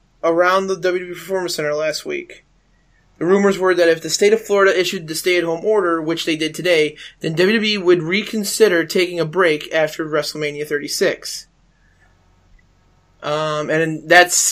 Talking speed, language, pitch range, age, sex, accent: 160 wpm, English, 160-195 Hz, 20-39, male, American